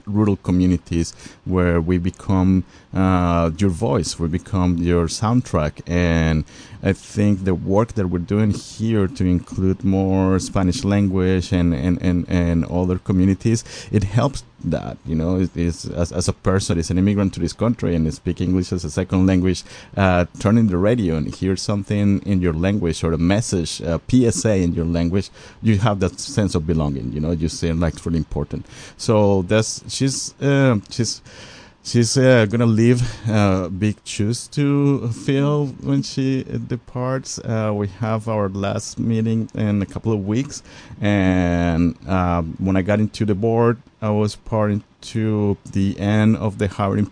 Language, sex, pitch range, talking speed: English, male, 90-110 Hz, 170 wpm